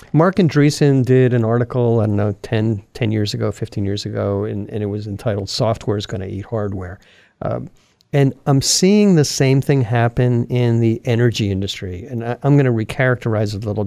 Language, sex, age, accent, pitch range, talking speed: English, male, 50-69, American, 105-125 Hz, 200 wpm